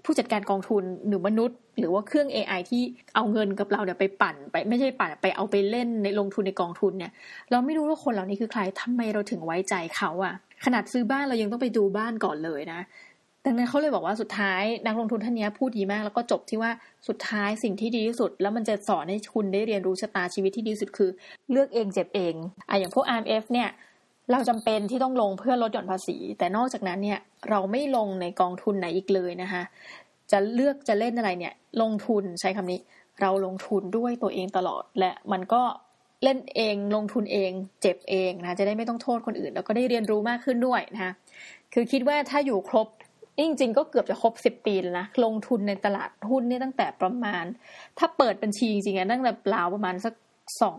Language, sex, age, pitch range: Thai, female, 20-39, 195-240 Hz